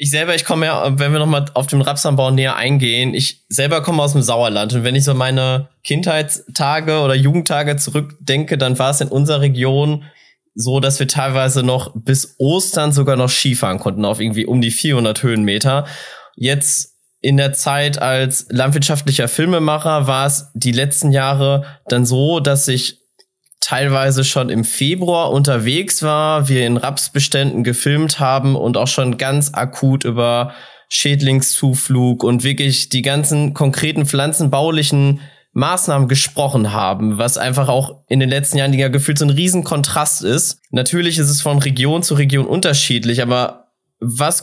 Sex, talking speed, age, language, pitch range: male, 160 wpm, 20-39, German, 130-150 Hz